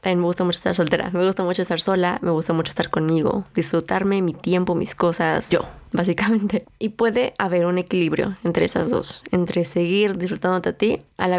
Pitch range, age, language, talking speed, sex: 175-220 Hz, 20-39, Spanish, 200 wpm, female